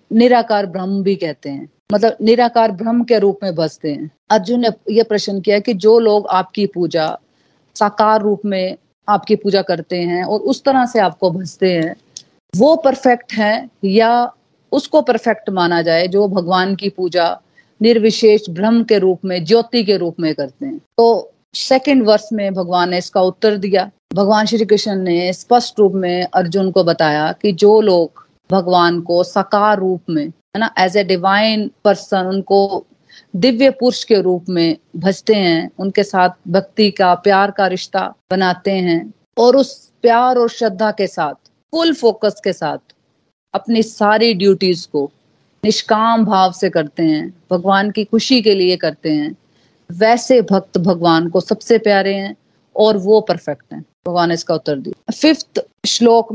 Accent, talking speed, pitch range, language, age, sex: native, 165 wpm, 180-225 Hz, Hindi, 40-59, female